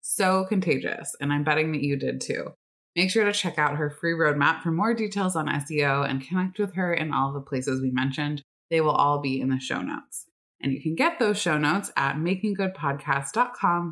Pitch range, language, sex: 145-195 Hz, English, female